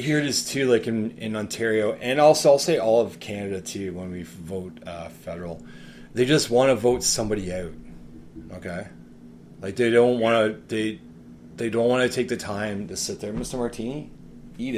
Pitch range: 85-115 Hz